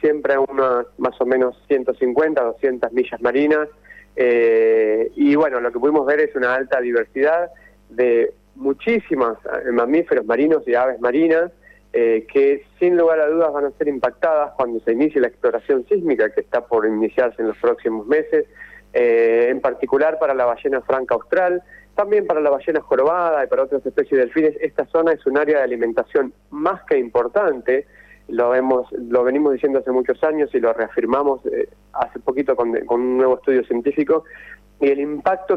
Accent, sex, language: Argentinian, male, Spanish